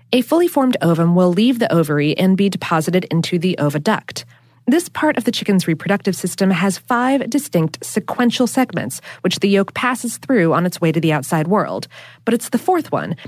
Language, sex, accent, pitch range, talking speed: English, female, American, 165-235 Hz, 195 wpm